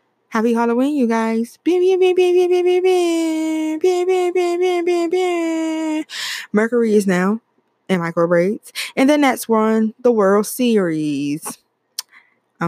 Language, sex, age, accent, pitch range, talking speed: English, female, 20-39, American, 160-250 Hz, 80 wpm